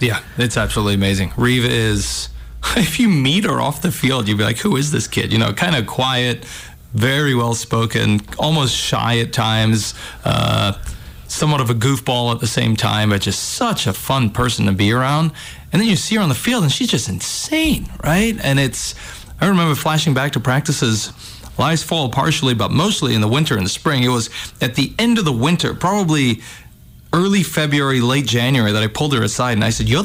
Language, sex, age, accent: English, male, 30-49, American